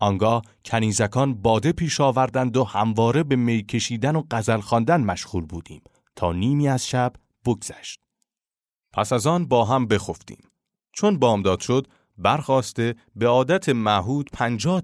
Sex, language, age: male, Persian, 30-49